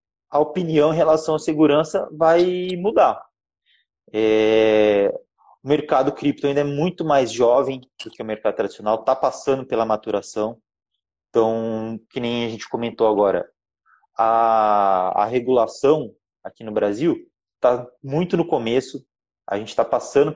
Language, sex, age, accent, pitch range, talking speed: Portuguese, male, 20-39, Brazilian, 110-155 Hz, 135 wpm